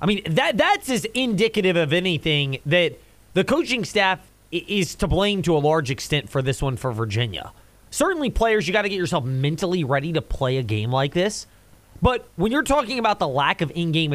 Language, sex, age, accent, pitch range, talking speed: English, male, 30-49, American, 140-220 Hz, 205 wpm